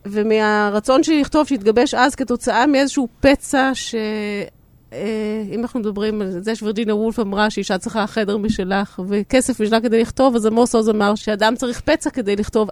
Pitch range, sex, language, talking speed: 205-250 Hz, female, Hebrew, 160 wpm